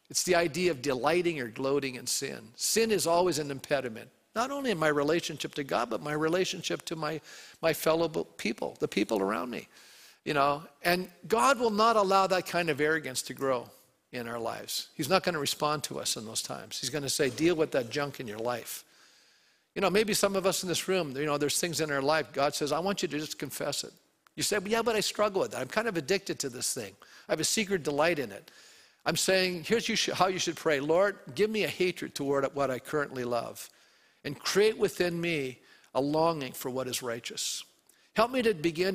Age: 50-69